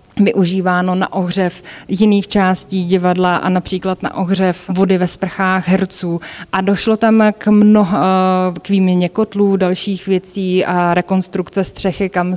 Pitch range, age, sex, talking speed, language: 180-195 Hz, 20-39, female, 135 wpm, Slovak